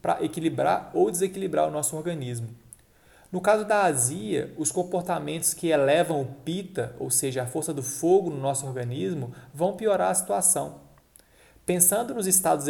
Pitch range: 135-180 Hz